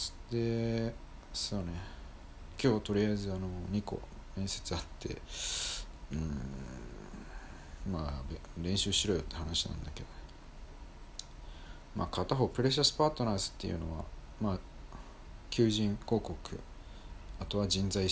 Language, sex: Japanese, male